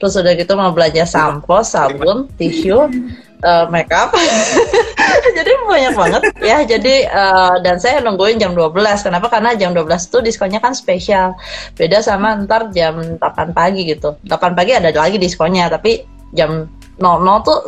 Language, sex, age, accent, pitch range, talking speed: Indonesian, female, 20-39, native, 175-230 Hz, 155 wpm